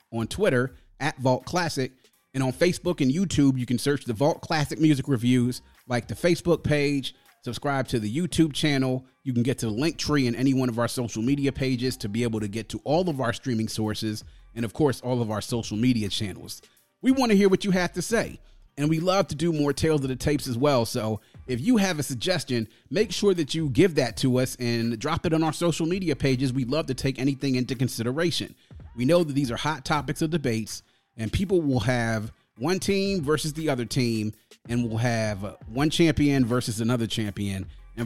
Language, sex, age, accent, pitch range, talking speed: English, male, 30-49, American, 120-160 Hz, 220 wpm